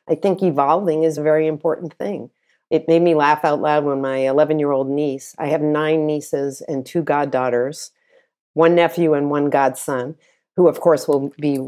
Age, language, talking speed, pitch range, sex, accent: 50-69, English, 180 wpm, 150-180 Hz, female, American